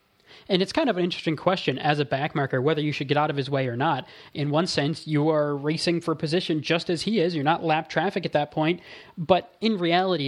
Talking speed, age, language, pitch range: 245 wpm, 20-39, English, 140-170 Hz